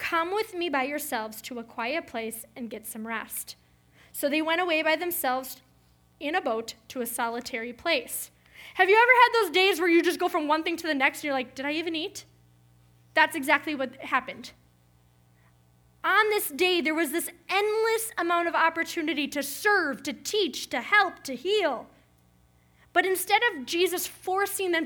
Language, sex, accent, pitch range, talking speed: English, female, American, 225-355 Hz, 185 wpm